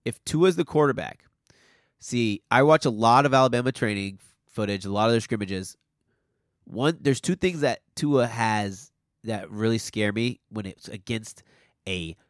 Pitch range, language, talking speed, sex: 110-140 Hz, English, 160 wpm, male